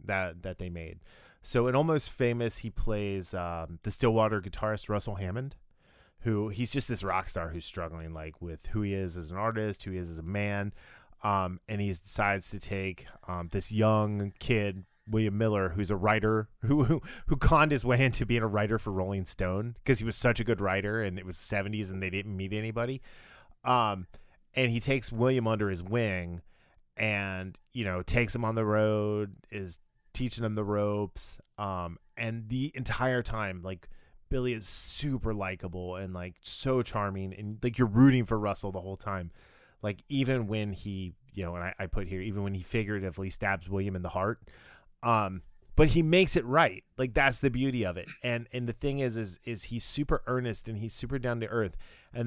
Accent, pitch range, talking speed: American, 95-120 Hz, 200 wpm